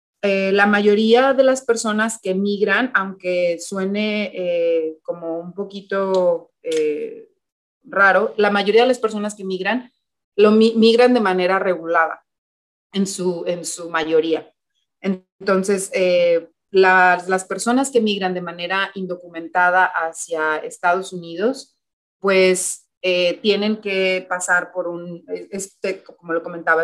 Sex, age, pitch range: female, 30-49, 170-205 Hz